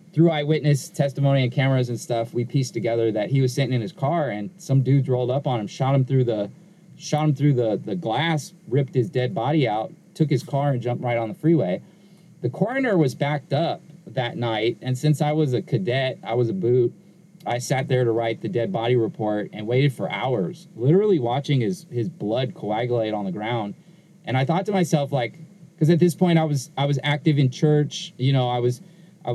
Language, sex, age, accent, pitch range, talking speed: English, male, 30-49, American, 125-165 Hz, 225 wpm